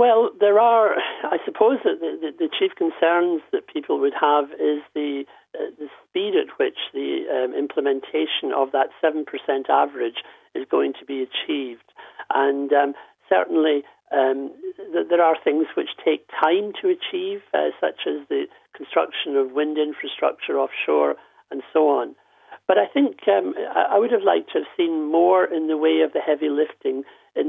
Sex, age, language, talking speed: male, 60-79, English, 165 wpm